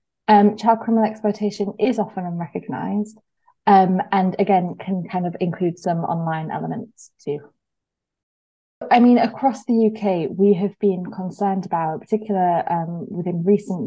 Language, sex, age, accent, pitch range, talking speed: English, female, 20-39, British, 170-210 Hz, 130 wpm